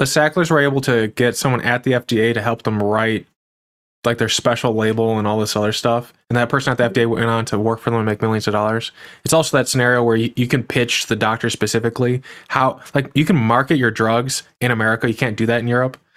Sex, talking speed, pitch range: male, 250 wpm, 110-130 Hz